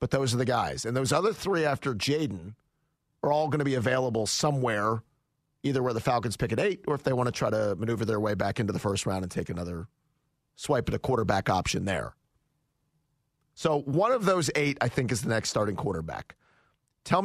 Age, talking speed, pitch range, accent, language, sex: 40-59, 215 wpm, 110-145 Hz, American, English, male